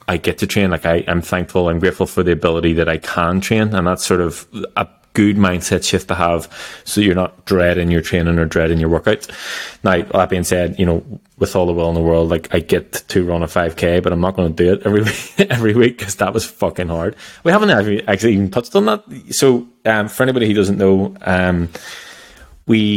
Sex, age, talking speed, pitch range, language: male, 20-39, 235 wpm, 85-100 Hz, English